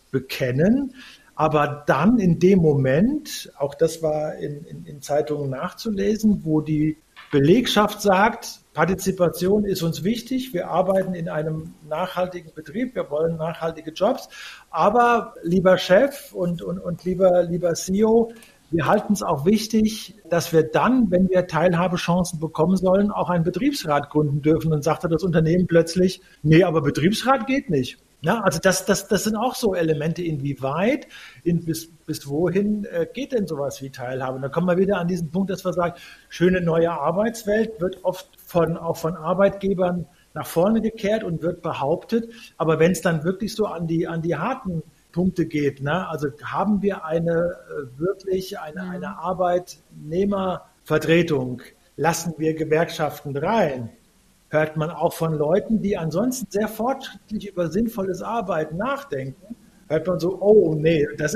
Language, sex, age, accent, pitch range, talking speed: German, male, 50-69, German, 155-200 Hz, 155 wpm